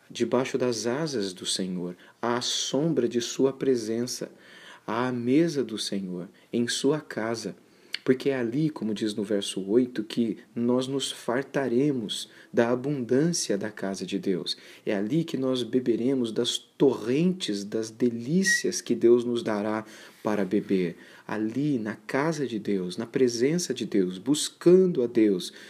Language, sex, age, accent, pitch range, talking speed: Portuguese, male, 40-59, Brazilian, 105-130 Hz, 145 wpm